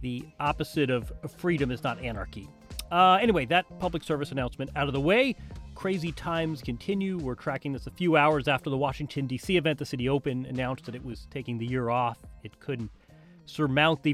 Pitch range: 135-185 Hz